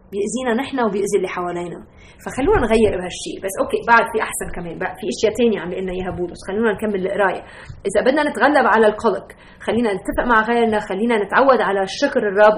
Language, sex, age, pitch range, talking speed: Arabic, female, 30-49, 210-305 Hz, 175 wpm